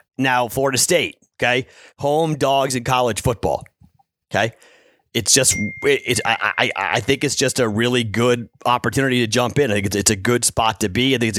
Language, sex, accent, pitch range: English, male, American, 110-145 Hz